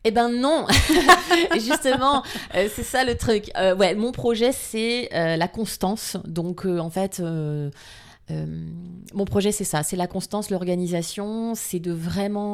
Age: 30-49